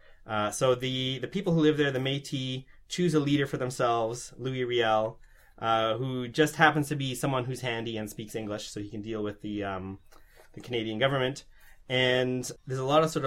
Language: English